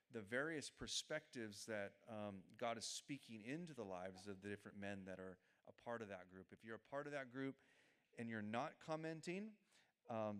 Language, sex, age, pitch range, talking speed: English, male, 30-49, 100-140 Hz, 195 wpm